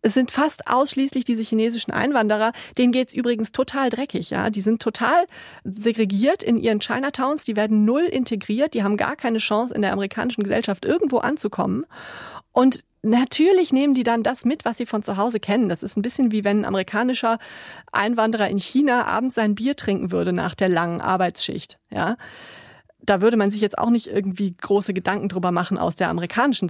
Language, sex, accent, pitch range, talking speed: German, female, German, 205-255 Hz, 190 wpm